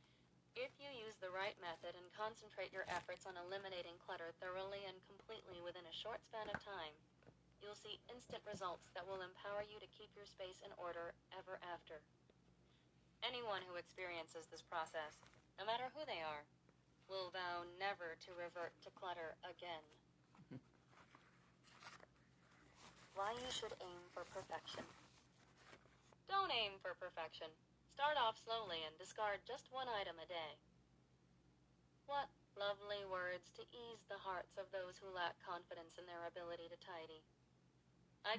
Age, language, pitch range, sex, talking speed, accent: 40-59, English, 165-200 Hz, female, 145 wpm, American